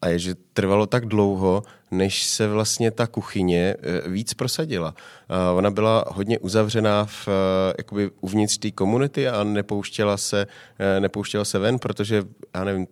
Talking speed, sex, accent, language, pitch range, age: 140 wpm, male, native, Czech, 95-110 Hz, 30-49